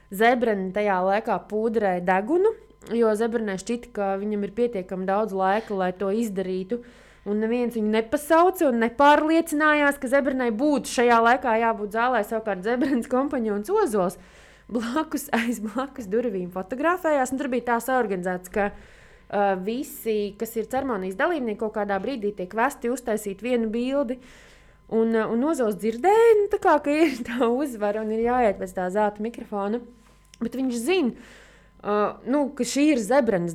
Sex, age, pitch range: female, 20-39, 205-270 Hz